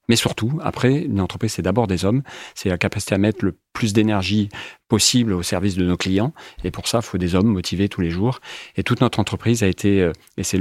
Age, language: 30-49, French